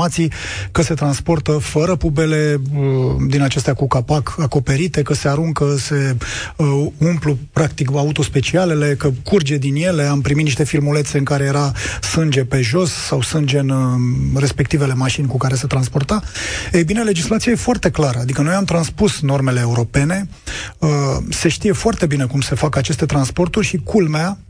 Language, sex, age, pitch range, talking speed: Romanian, male, 30-49, 140-165 Hz, 155 wpm